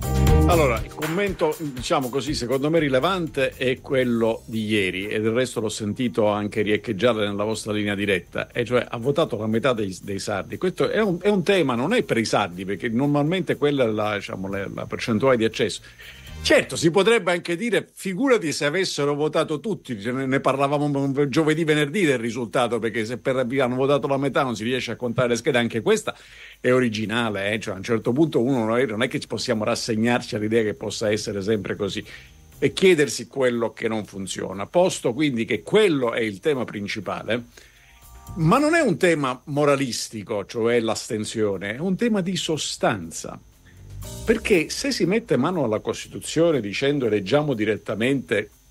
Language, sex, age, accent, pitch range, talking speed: Italian, male, 50-69, native, 105-150 Hz, 170 wpm